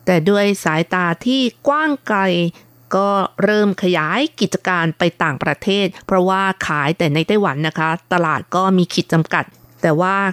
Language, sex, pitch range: Thai, female, 175-215 Hz